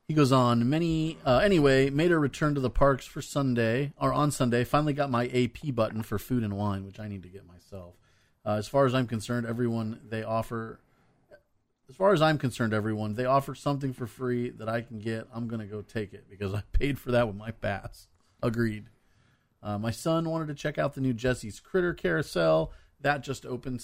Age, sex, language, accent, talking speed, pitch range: 40-59, male, English, American, 215 wpm, 105-135 Hz